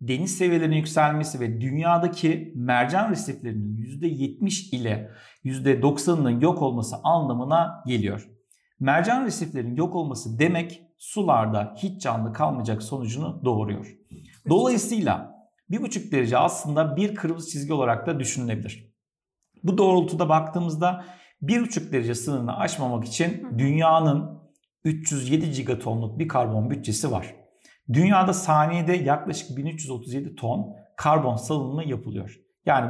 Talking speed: 110 wpm